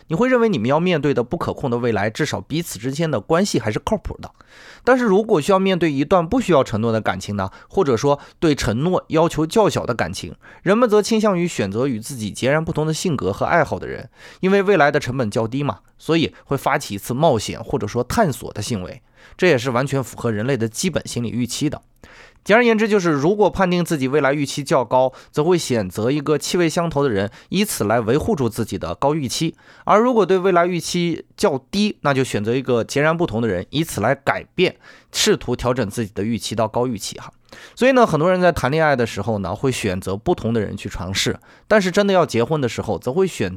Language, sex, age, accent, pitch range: Chinese, male, 20-39, native, 115-175 Hz